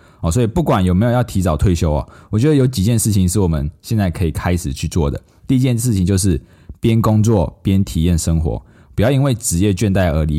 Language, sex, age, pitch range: Chinese, male, 20-39, 85-105 Hz